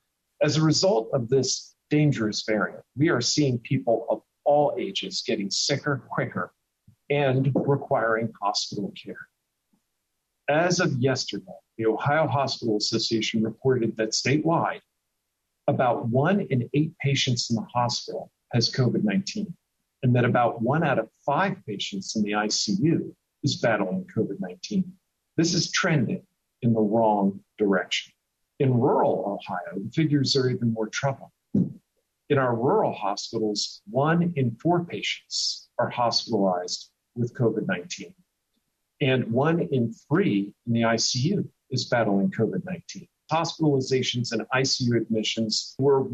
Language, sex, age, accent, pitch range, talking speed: English, male, 50-69, American, 110-150 Hz, 125 wpm